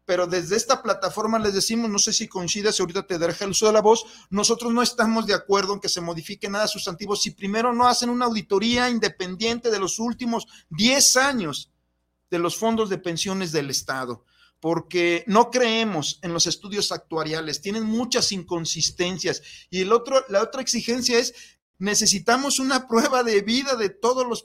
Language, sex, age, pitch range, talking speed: Spanish, male, 50-69, 175-225 Hz, 180 wpm